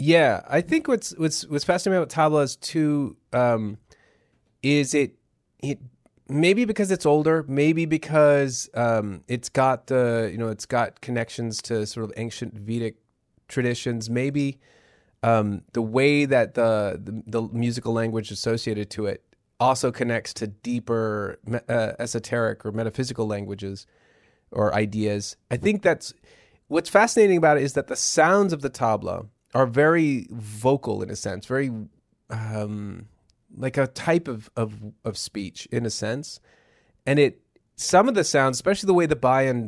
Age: 30-49